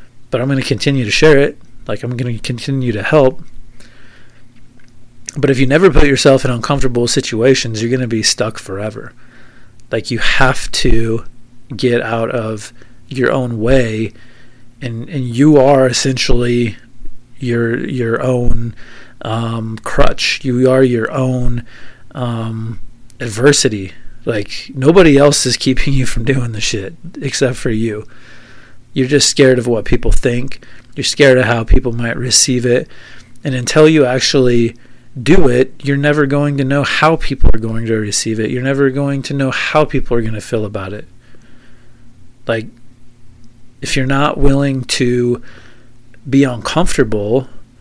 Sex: male